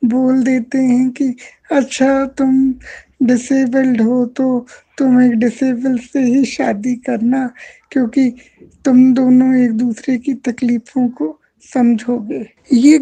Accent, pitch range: native, 250-295 Hz